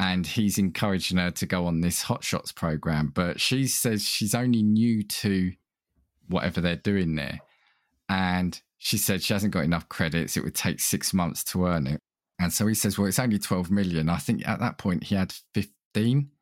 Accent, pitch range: British, 85-105 Hz